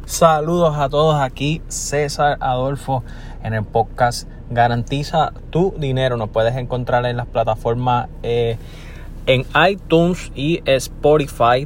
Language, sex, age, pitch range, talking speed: Spanish, male, 20-39, 120-145 Hz, 120 wpm